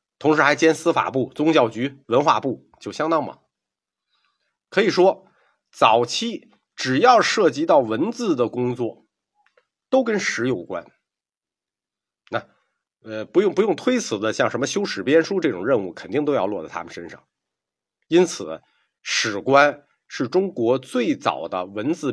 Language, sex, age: Chinese, male, 50-69